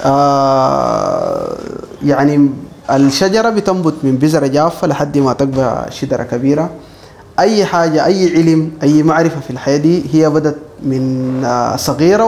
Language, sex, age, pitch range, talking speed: Arabic, male, 20-39, 135-170 Hz, 120 wpm